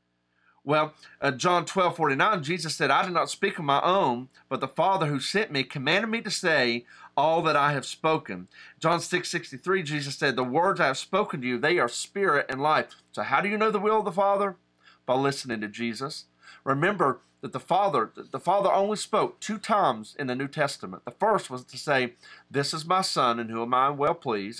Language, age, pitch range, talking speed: English, 40-59, 115-160 Hz, 220 wpm